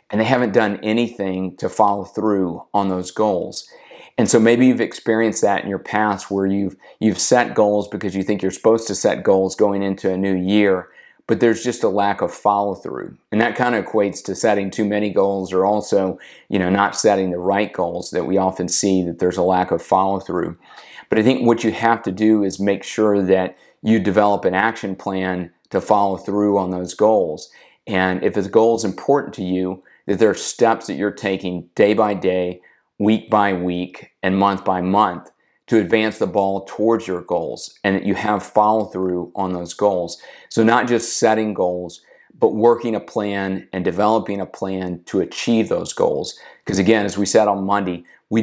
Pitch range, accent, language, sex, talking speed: 95-110 Hz, American, English, male, 205 wpm